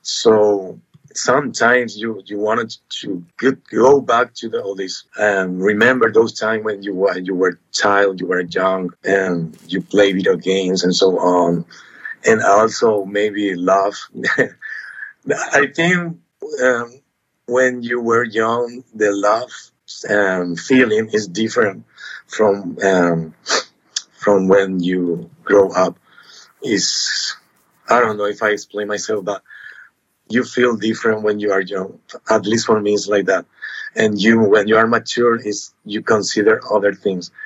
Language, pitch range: English, 95-115 Hz